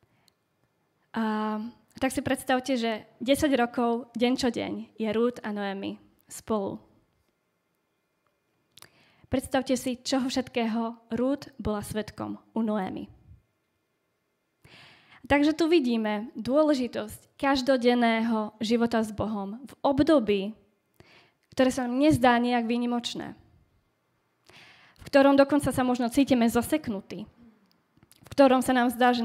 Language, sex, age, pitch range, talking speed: Slovak, female, 20-39, 220-265 Hz, 110 wpm